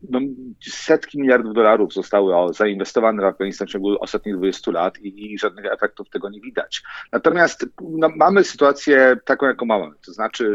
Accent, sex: native, male